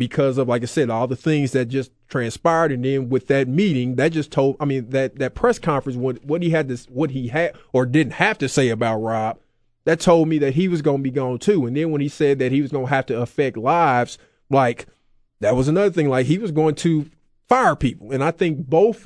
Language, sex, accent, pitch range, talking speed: English, male, American, 130-160 Hz, 250 wpm